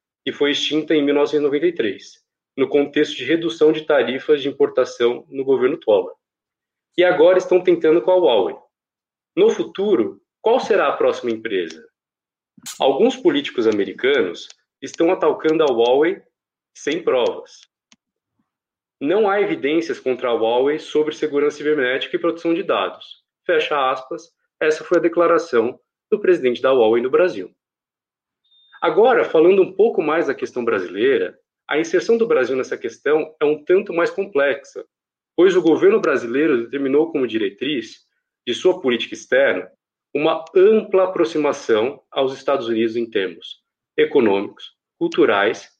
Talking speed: 135 wpm